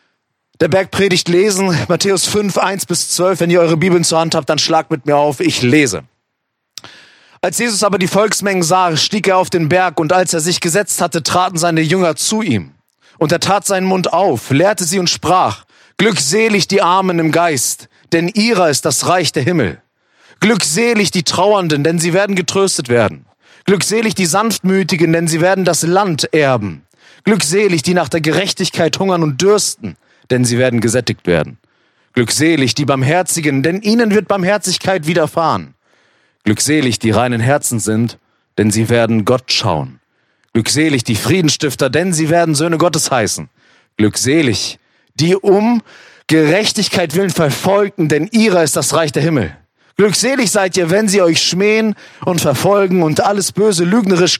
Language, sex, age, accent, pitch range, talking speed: German, male, 30-49, German, 150-195 Hz, 160 wpm